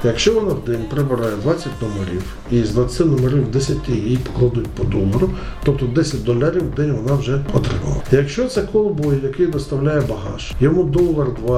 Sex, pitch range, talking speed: male, 120-165 Hz, 170 wpm